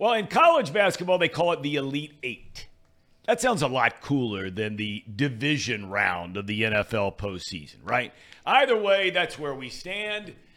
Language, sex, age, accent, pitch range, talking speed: English, male, 50-69, American, 110-165 Hz, 170 wpm